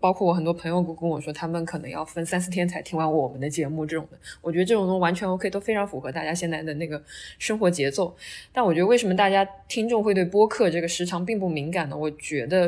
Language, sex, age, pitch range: Chinese, female, 20-39, 160-205 Hz